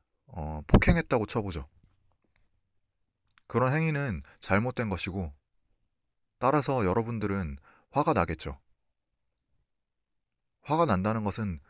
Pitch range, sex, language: 90-115 Hz, male, Korean